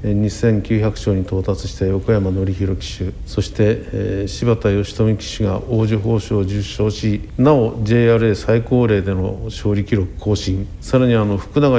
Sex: male